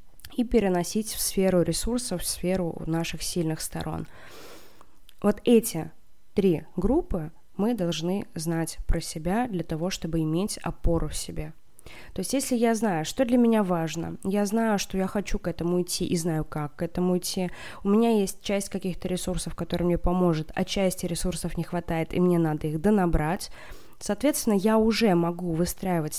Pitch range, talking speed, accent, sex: 170-210 Hz, 165 wpm, native, female